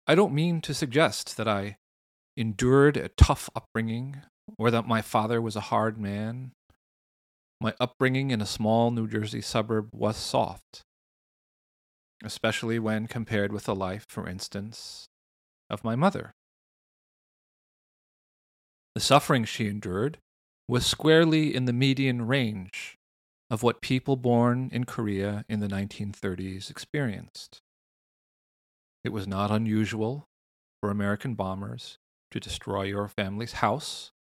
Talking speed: 125 wpm